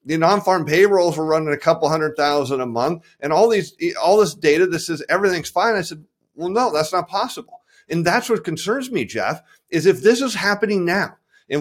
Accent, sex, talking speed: American, male, 210 wpm